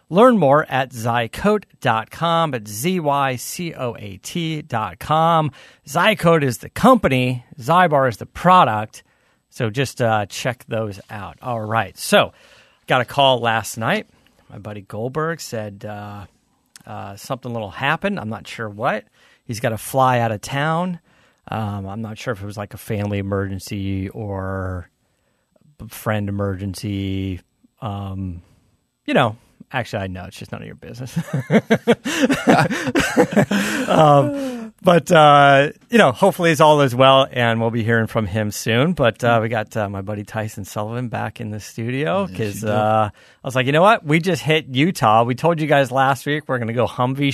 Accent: American